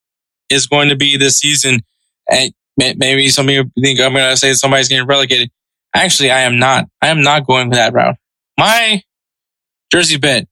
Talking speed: 190 wpm